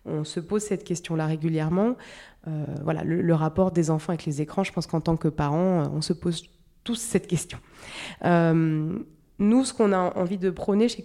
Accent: French